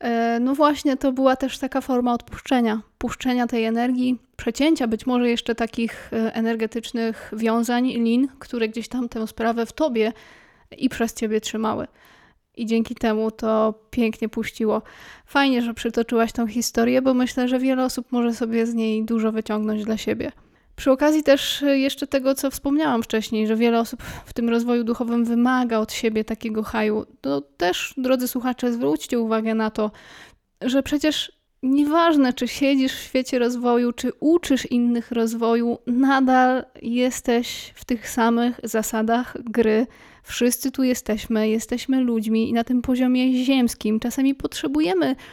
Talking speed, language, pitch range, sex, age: 150 wpm, Polish, 225-260 Hz, female, 20-39